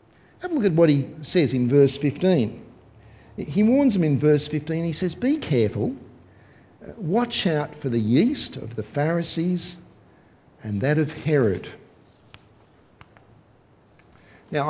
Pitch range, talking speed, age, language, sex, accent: 115-145 Hz, 135 wpm, 50-69, English, male, Australian